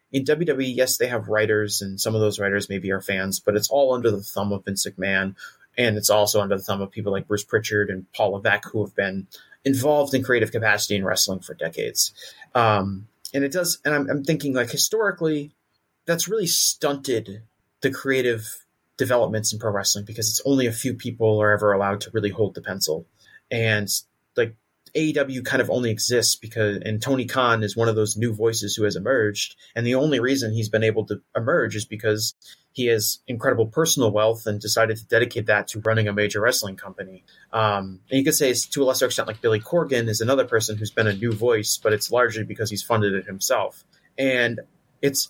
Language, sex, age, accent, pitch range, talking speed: English, male, 30-49, American, 105-130 Hz, 210 wpm